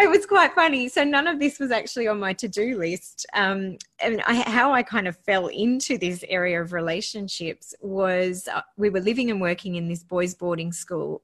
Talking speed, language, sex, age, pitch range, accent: 205 wpm, English, female, 20-39, 175-225 Hz, Australian